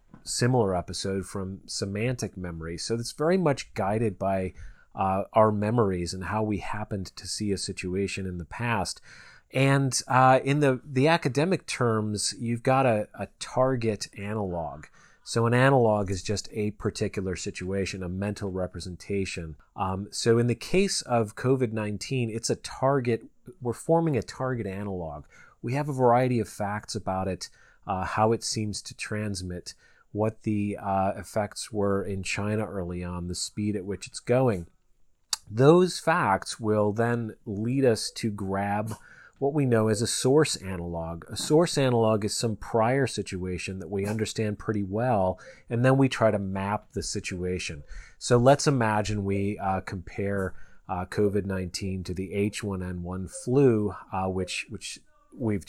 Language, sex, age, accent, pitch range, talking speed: English, male, 30-49, American, 95-120 Hz, 155 wpm